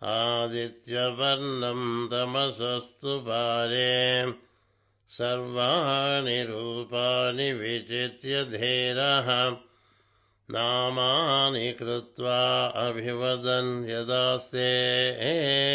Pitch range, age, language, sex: 115-125 Hz, 60-79, Telugu, male